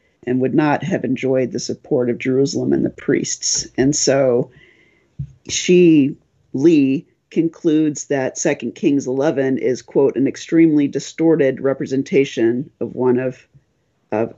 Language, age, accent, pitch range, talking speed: English, 50-69, American, 125-165 Hz, 130 wpm